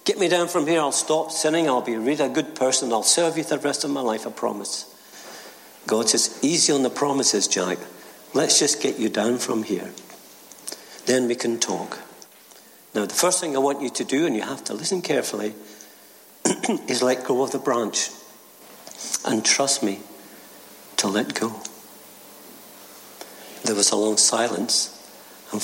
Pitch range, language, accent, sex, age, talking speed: 115-145 Hz, English, British, male, 60-79, 175 wpm